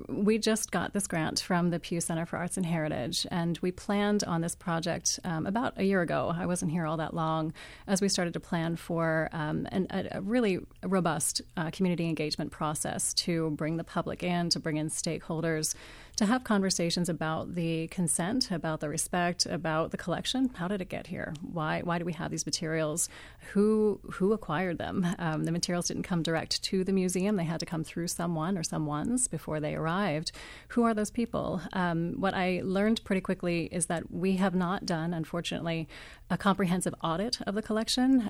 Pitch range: 165-195 Hz